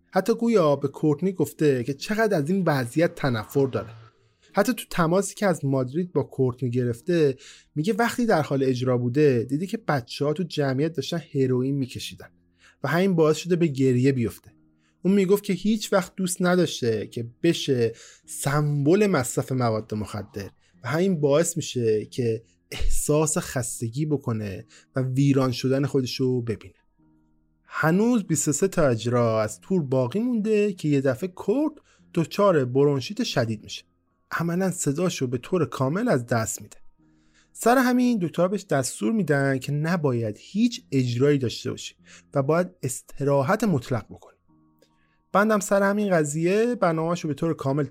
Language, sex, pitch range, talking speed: Persian, male, 120-185 Hz, 150 wpm